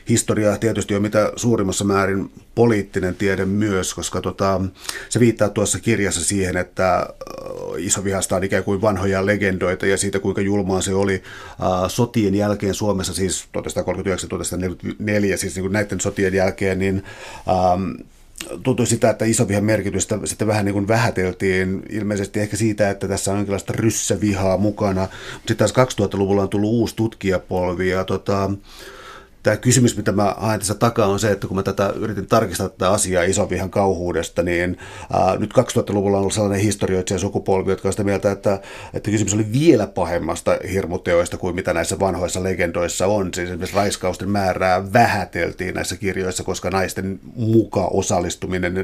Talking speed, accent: 150 wpm, native